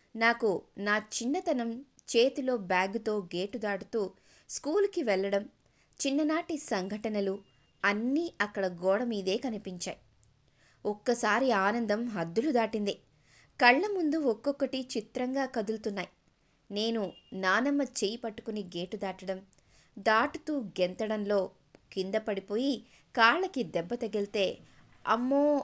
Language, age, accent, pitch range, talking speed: Telugu, 20-39, native, 200-260 Hz, 90 wpm